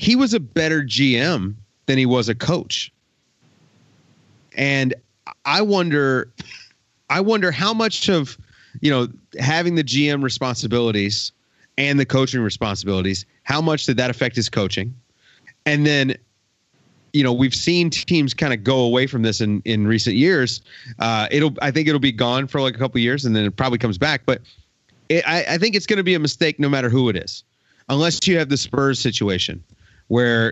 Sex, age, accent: male, 30-49, American